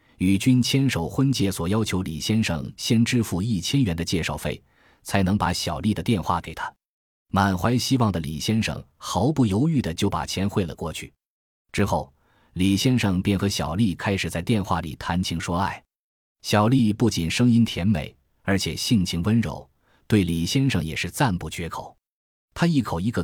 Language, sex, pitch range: Chinese, male, 85-110 Hz